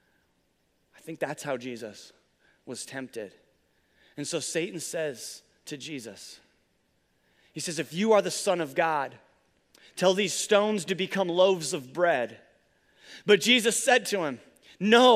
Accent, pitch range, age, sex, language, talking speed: American, 180-230 Hz, 30-49, male, English, 145 wpm